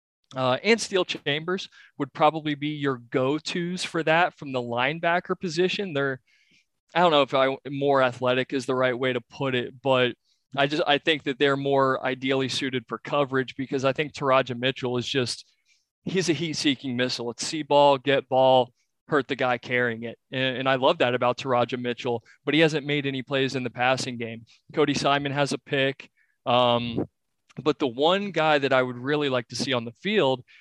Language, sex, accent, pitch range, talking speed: English, male, American, 130-150 Hz, 200 wpm